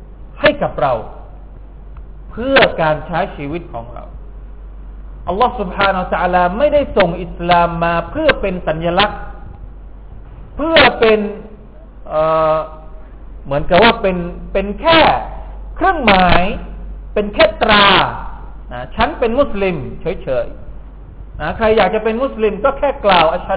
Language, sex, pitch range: Thai, male, 155-215 Hz